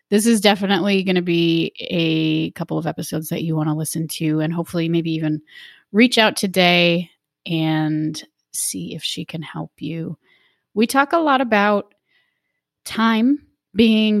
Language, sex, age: English, female, 30-49